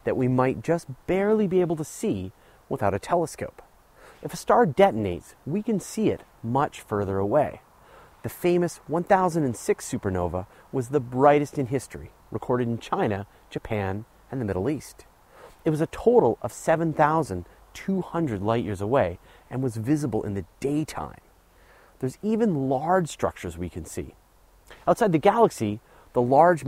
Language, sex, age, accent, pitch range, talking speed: English, male, 30-49, American, 100-165 Hz, 150 wpm